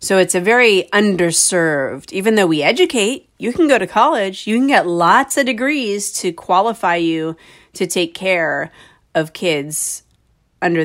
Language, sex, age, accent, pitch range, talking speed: English, female, 30-49, American, 155-205 Hz, 160 wpm